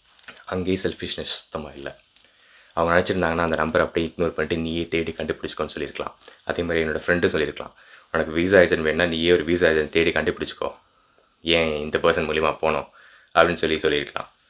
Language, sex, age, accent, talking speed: Tamil, male, 20-39, native, 155 wpm